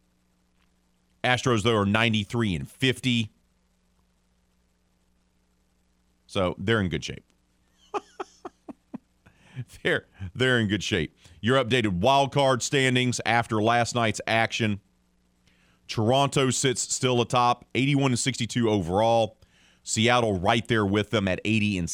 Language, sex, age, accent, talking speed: English, male, 40-59, American, 110 wpm